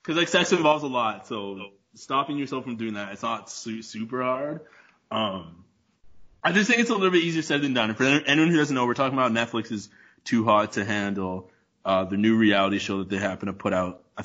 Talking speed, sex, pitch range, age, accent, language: 230 wpm, male, 100-140 Hz, 20-39, American, English